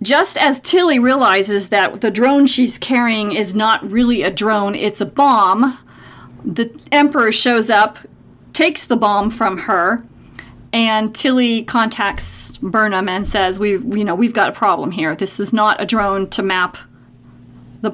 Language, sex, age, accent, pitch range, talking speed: English, female, 40-59, American, 200-255 Hz, 160 wpm